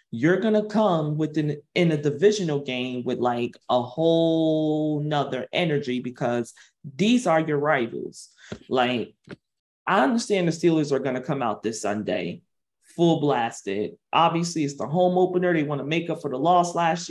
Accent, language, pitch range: American, English, 140-170 Hz